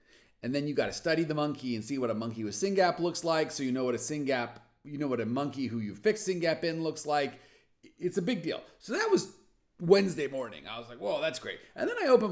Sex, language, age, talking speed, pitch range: male, English, 40-59, 265 wpm, 120-175 Hz